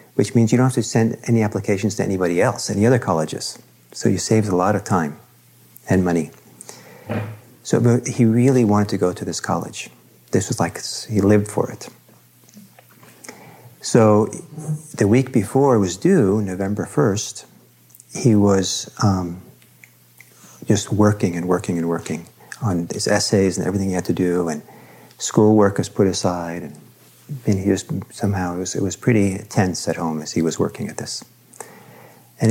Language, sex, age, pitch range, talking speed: English, male, 50-69, 85-110 Hz, 170 wpm